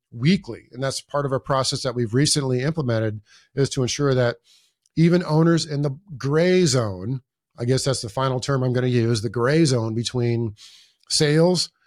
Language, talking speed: English, 180 wpm